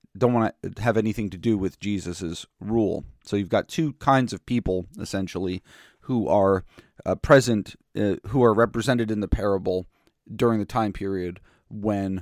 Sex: male